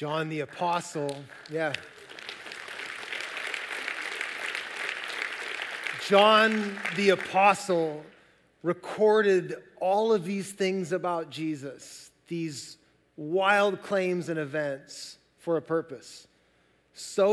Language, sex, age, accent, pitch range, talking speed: English, male, 30-49, American, 165-200 Hz, 80 wpm